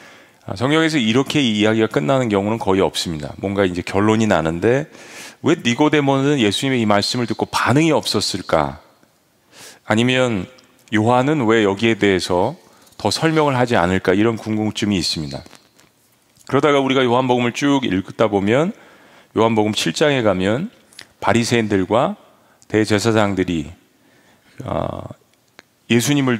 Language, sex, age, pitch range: Korean, male, 40-59, 100-135 Hz